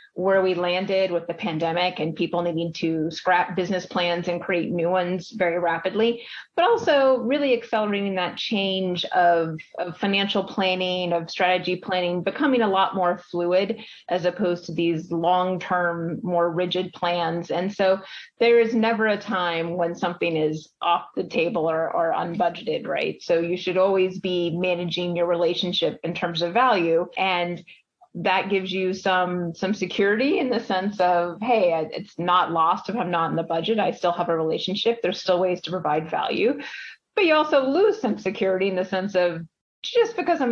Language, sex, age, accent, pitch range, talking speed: English, female, 30-49, American, 175-195 Hz, 175 wpm